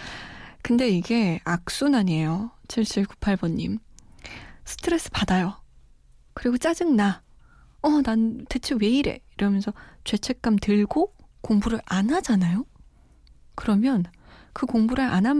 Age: 20-39